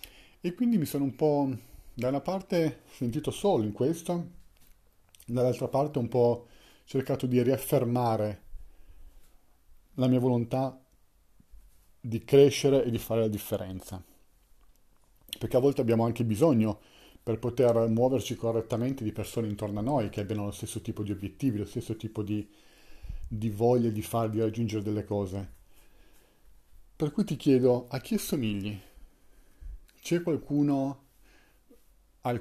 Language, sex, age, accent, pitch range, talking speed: Italian, male, 40-59, native, 105-130 Hz, 135 wpm